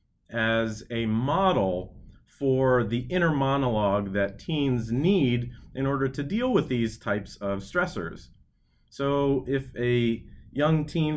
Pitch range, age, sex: 110-140 Hz, 30-49, male